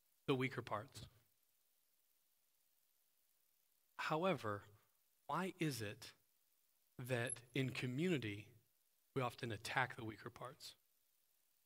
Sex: male